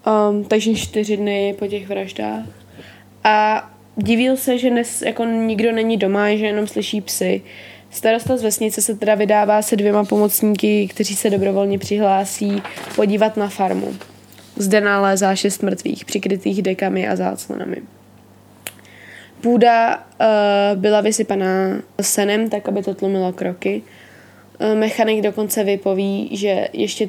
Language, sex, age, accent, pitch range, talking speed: Czech, female, 20-39, native, 190-215 Hz, 120 wpm